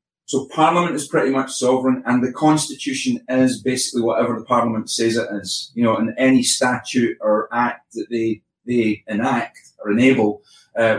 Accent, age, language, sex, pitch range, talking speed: British, 30-49, English, male, 115-130 Hz, 170 wpm